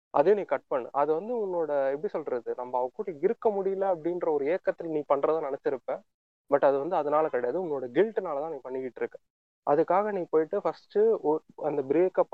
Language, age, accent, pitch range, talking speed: Tamil, 30-49, native, 145-225 Hz, 180 wpm